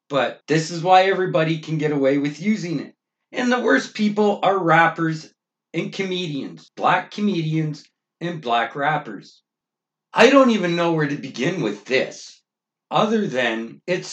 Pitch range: 150-185 Hz